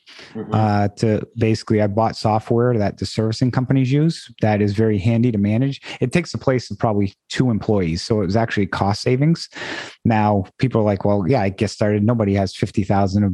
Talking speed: 200 wpm